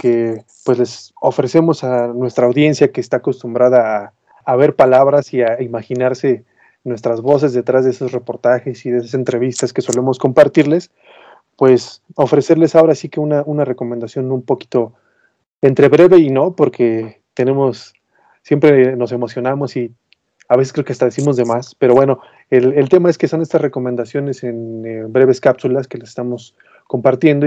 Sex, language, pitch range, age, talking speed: male, Spanish, 120-140 Hz, 30-49, 165 wpm